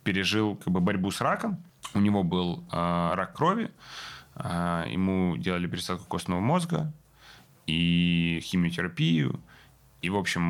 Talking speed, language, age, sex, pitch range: 130 wpm, Ukrainian, 20-39, male, 85-100 Hz